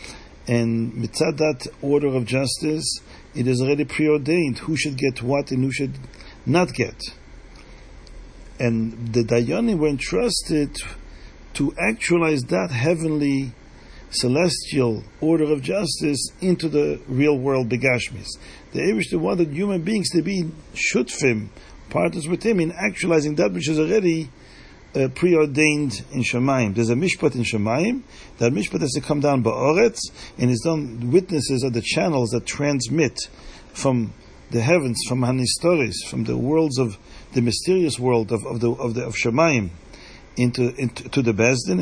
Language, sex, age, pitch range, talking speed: English, male, 40-59, 115-155 Hz, 150 wpm